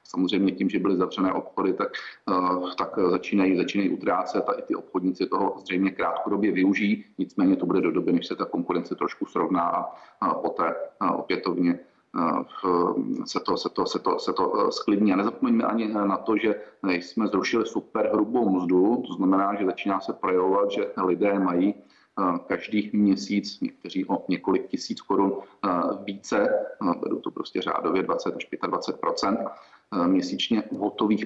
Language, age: Czech, 40-59